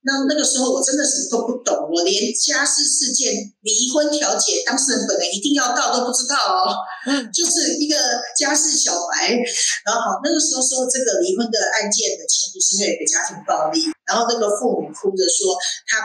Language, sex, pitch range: Chinese, female, 195-295 Hz